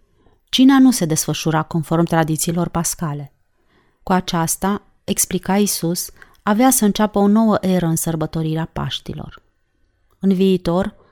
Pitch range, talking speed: 160-195 Hz, 120 wpm